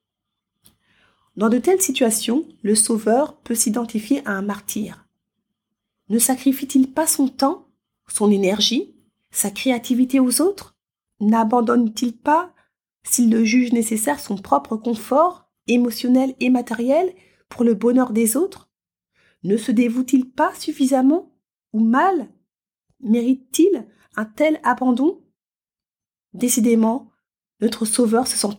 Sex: female